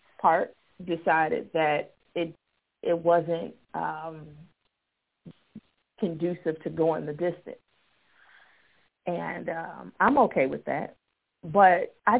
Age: 30-49